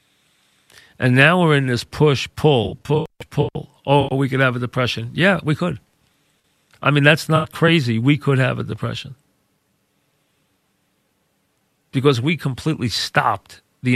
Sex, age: male, 40-59